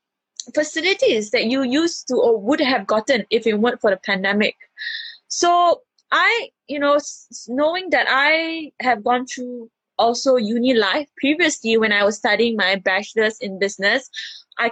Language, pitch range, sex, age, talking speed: English, 235-370 Hz, female, 20-39, 155 wpm